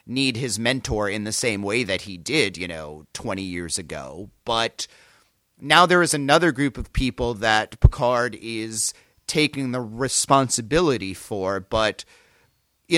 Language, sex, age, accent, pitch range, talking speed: English, male, 40-59, American, 110-145 Hz, 150 wpm